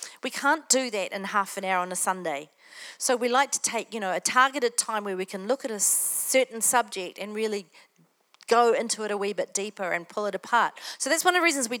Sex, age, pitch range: female, 40-59, 195-245 Hz